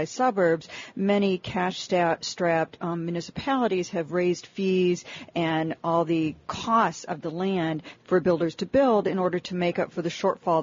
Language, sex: English, female